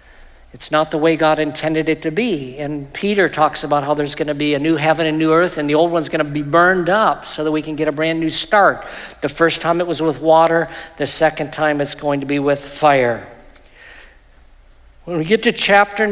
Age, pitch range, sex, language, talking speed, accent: 50-69, 150-175 Hz, male, English, 225 wpm, American